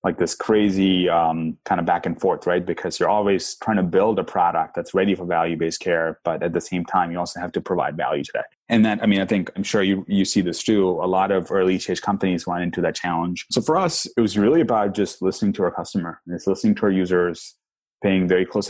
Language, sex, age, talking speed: English, male, 20-39, 255 wpm